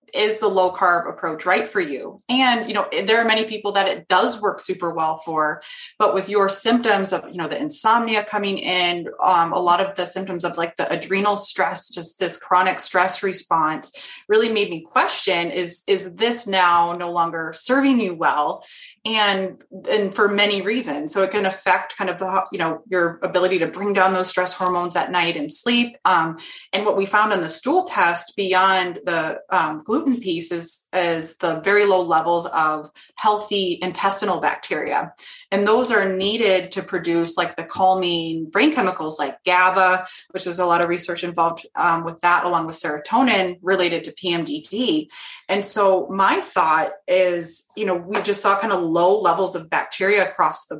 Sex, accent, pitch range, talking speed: female, American, 175-200 Hz, 185 wpm